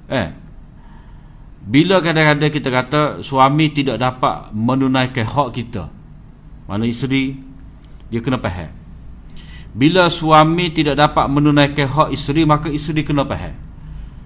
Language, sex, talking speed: Malay, male, 115 wpm